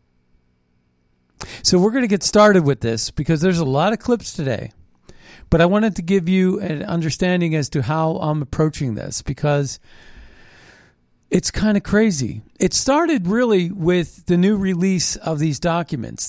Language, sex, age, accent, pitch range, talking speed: English, male, 50-69, American, 120-180 Hz, 160 wpm